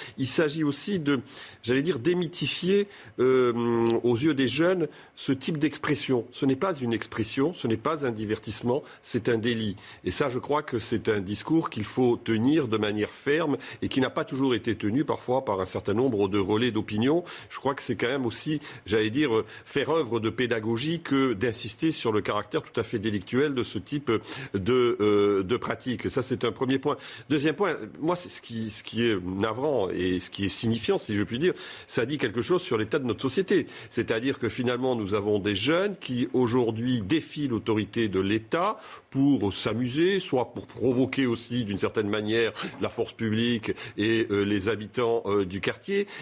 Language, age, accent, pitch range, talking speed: French, 50-69, French, 110-150 Hz, 195 wpm